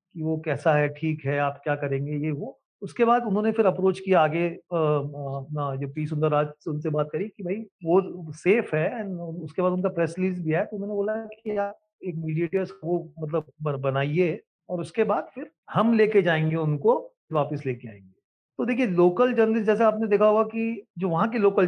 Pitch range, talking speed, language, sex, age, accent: 155-205 Hz, 165 wpm, English, male, 40-59, Indian